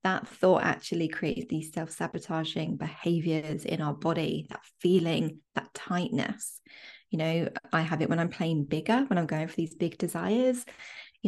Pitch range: 170-220 Hz